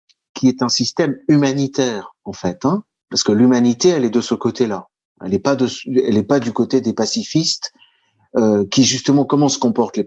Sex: male